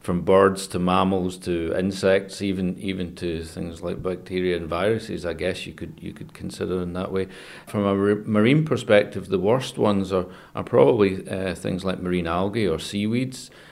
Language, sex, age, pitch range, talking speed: English, male, 40-59, 90-100 Hz, 180 wpm